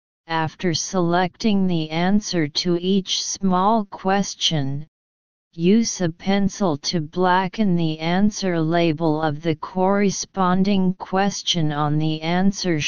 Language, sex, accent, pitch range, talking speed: English, female, American, 160-200 Hz, 105 wpm